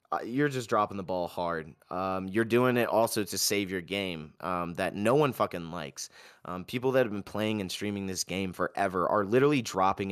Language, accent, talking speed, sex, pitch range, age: English, American, 210 wpm, male, 95-120 Hz, 20-39